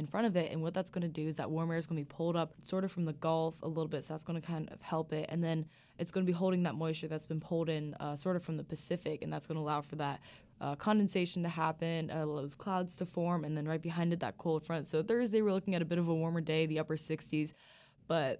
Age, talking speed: 20-39, 305 wpm